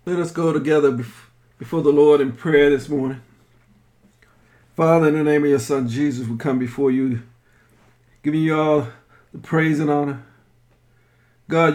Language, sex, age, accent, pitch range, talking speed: English, male, 50-69, American, 120-175 Hz, 155 wpm